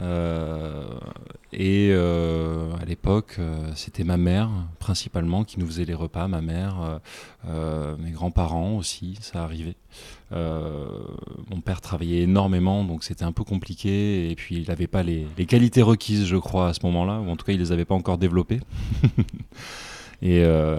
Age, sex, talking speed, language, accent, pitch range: 20-39, male, 175 wpm, French, French, 85-105 Hz